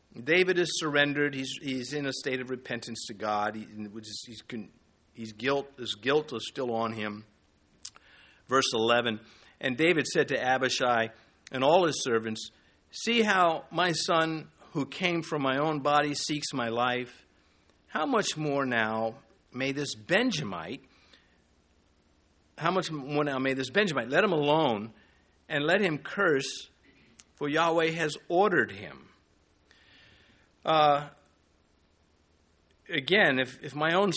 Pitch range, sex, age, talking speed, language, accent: 110-160 Hz, male, 50-69, 135 wpm, English, American